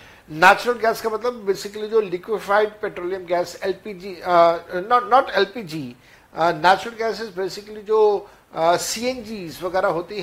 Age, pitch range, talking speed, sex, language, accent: 60-79, 175-220 Hz, 135 wpm, male, Hindi, native